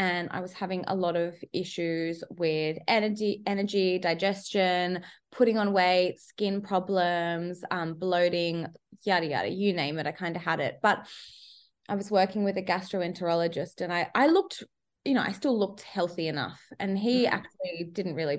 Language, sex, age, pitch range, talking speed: English, female, 20-39, 175-205 Hz, 170 wpm